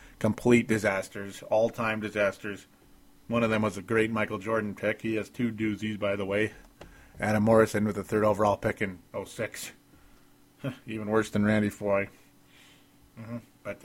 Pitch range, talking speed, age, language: 105-130 Hz, 160 wpm, 30-49, English